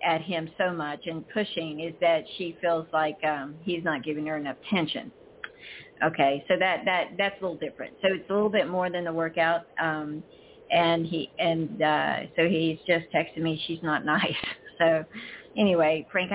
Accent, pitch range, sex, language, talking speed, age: American, 160-190 Hz, female, English, 185 wpm, 50-69